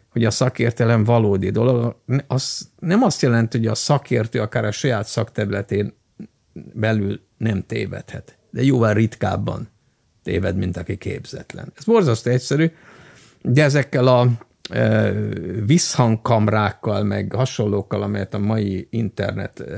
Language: Hungarian